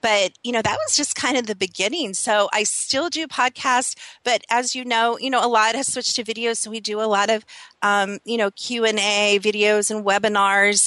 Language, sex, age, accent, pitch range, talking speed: English, female, 40-59, American, 190-220 Hz, 220 wpm